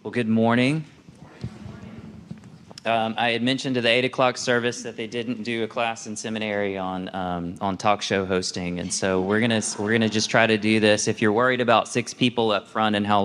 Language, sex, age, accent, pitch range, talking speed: English, male, 20-39, American, 95-110 Hz, 215 wpm